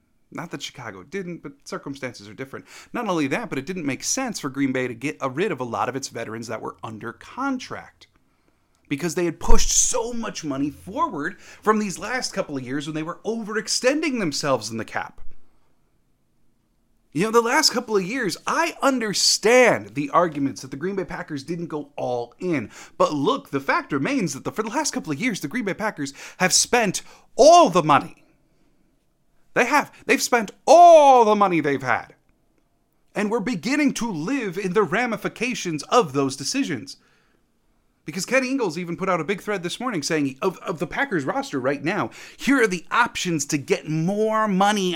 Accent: American